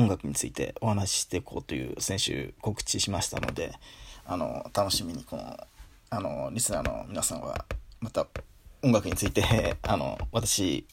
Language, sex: Japanese, male